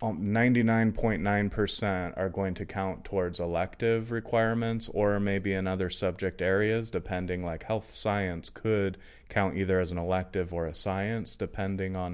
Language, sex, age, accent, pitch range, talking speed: English, male, 30-49, American, 95-110 Hz, 145 wpm